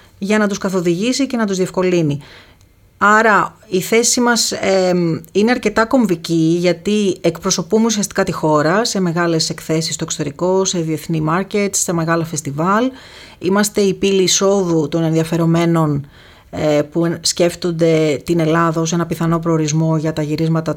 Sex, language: female, Greek